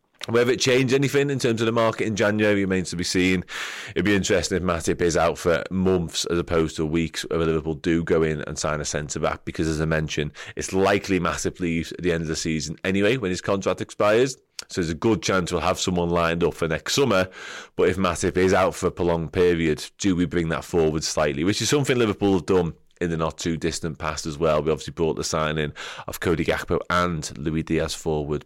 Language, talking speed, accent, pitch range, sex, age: English, 230 wpm, British, 80-95 Hz, male, 30-49